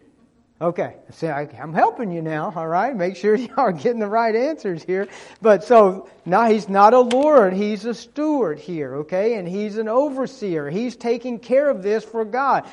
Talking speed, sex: 190 wpm, male